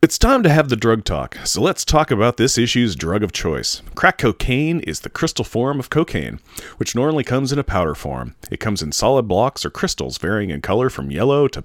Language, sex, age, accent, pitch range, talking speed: English, male, 40-59, American, 95-135 Hz, 225 wpm